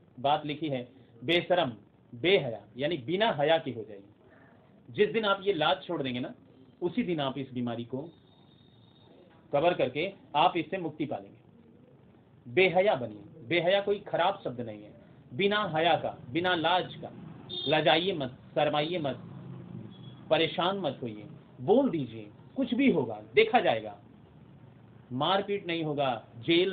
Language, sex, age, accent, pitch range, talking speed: Hindi, male, 40-59, native, 125-170 Hz, 130 wpm